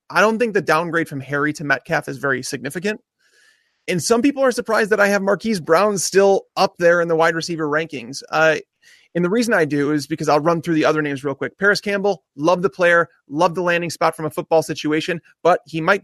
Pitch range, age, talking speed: 155-195 Hz, 30-49, 230 wpm